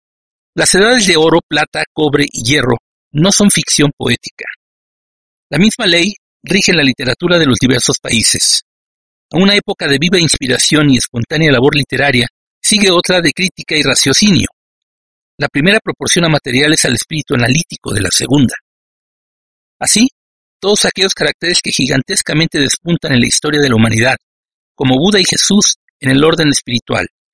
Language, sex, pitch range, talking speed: Spanish, male, 135-180 Hz, 155 wpm